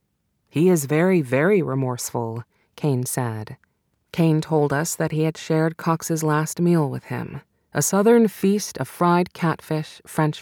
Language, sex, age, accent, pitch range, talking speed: English, female, 30-49, American, 135-170 Hz, 150 wpm